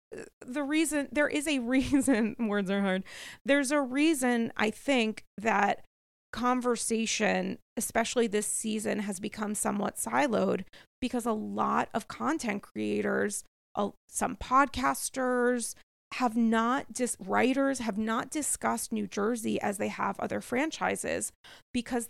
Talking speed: 130 wpm